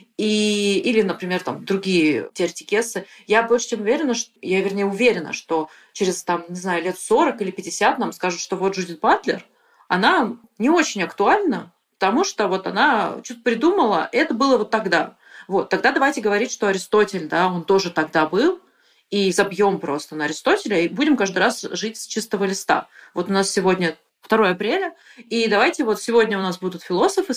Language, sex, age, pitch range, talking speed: Russian, female, 30-49, 175-230 Hz, 180 wpm